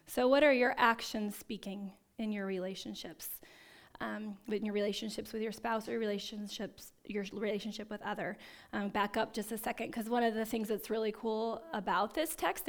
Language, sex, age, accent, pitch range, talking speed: English, female, 10-29, American, 210-245 Hz, 185 wpm